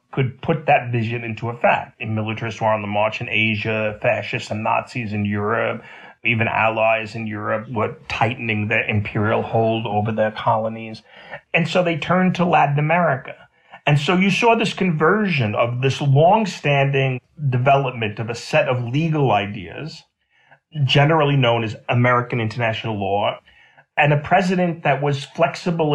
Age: 40-59